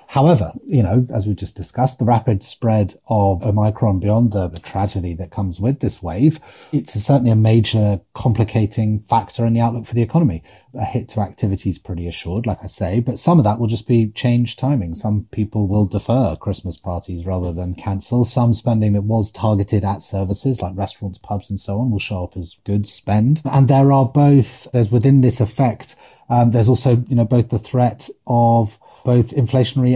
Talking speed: 200 wpm